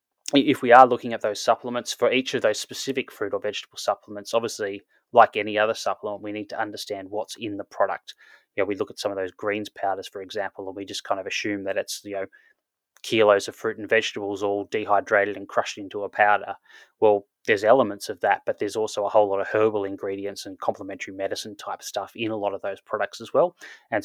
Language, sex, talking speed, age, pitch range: English, male, 225 wpm, 20-39, 100-115 Hz